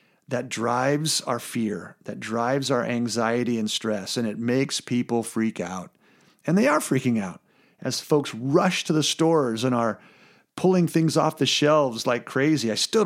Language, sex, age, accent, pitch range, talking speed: English, male, 40-59, American, 120-160 Hz, 175 wpm